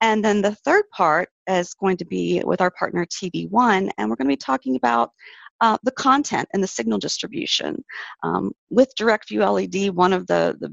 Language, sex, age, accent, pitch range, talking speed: English, female, 40-59, American, 155-205 Hz, 195 wpm